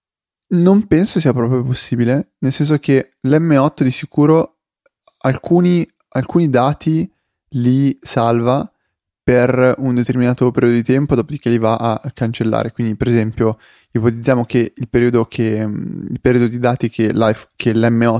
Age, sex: 20-39, male